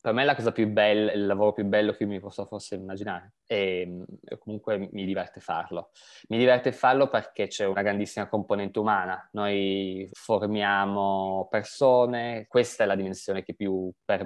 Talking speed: 170 wpm